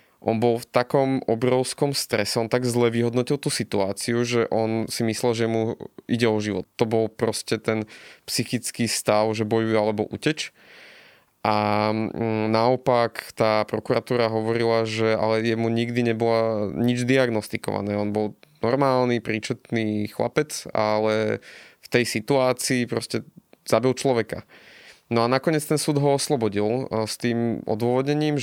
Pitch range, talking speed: 110-130 Hz, 135 wpm